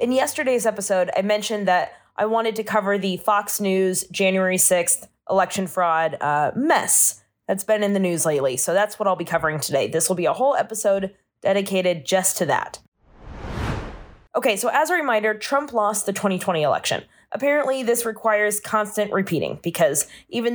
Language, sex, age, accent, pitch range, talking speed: English, female, 20-39, American, 180-230 Hz, 170 wpm